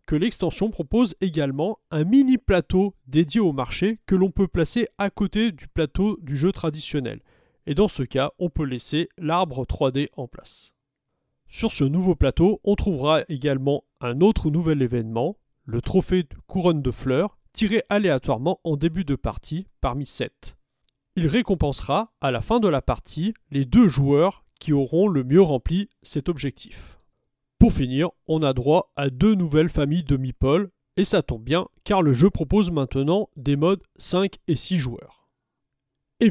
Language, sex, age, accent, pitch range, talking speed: French, male, 30-49, French, 140-200 Hz, 170 wpm